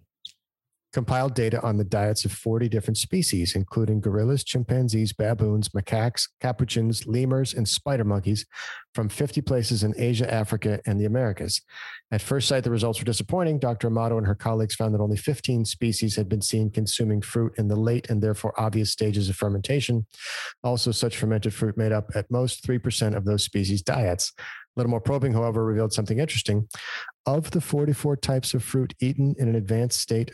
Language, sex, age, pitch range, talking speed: English, male, 40-59, 110-130 Hz, 180 wpm